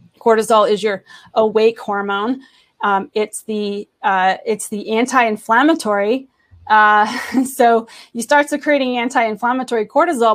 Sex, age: female, 30-49